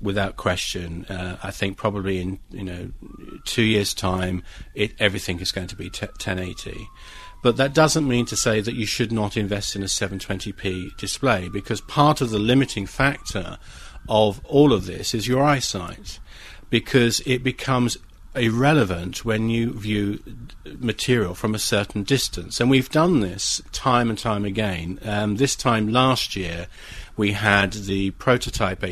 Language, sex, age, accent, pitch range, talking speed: English, male, 40-59, British, 95-120 Hz, 155 wpm